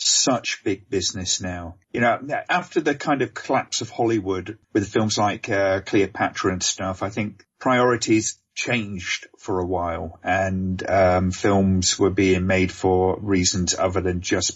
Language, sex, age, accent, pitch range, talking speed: English, male, 40-59, British, 95-110 Hz, 155 wpm